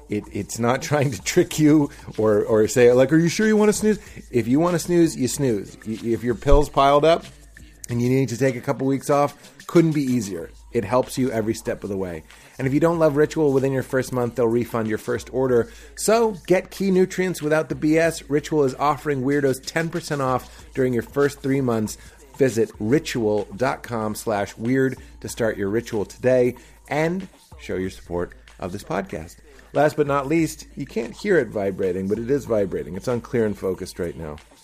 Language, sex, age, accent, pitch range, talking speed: English, male, 30-49, American, 110-150 Hz, 205 wpm